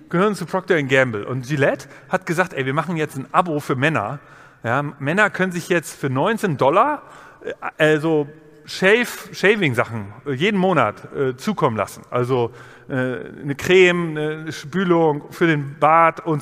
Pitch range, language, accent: 145-200 Hz, German, German